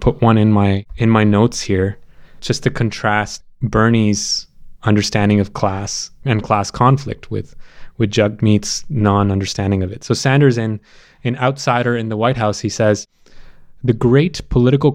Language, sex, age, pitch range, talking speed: English, male, 20-39, 110-145 Hz, 155 wpm